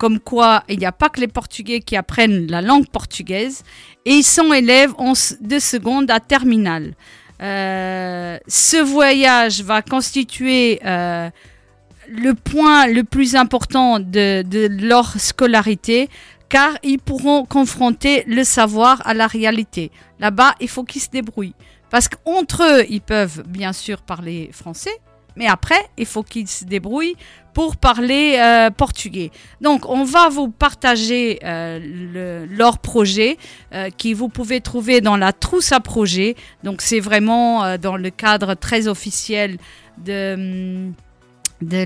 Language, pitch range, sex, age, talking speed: French, 200-260 Hz, female, 40-59, 150 wpm